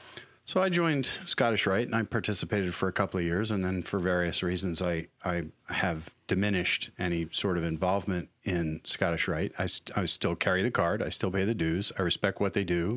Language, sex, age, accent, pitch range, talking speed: English, male, 40-59, American, 90-115 Hz, 215 wpm